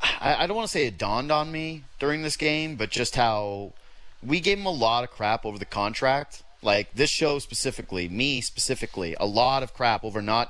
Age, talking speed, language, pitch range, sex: 30-49, 210 wpm, English, 115-155 Hz, male